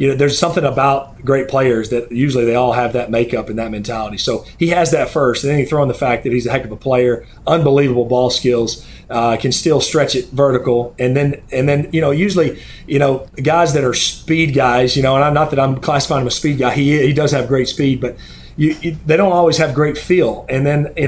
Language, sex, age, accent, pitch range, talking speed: English, male, 40-59, American, 125-150 Hz, 255 wpm